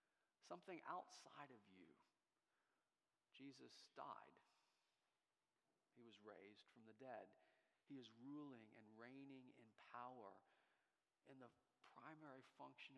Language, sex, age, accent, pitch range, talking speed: English, male, 40-59, American, 115-140 Hz, 105 wpm